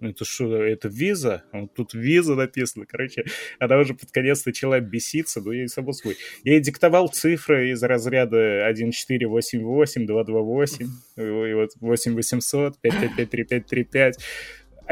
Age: 20-39